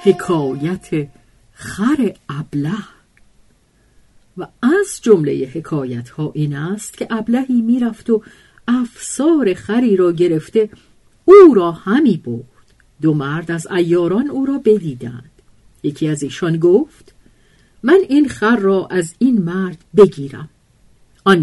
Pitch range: 155-250 Hz